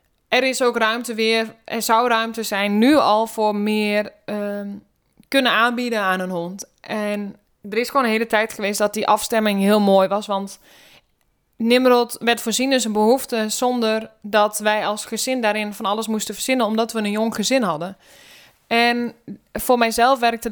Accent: Dutch